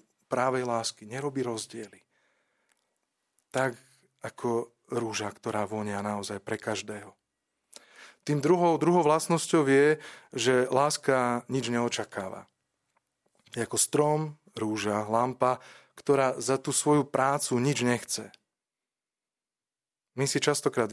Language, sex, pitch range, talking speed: Slovak, male, 115-135 Hz, 105 wpm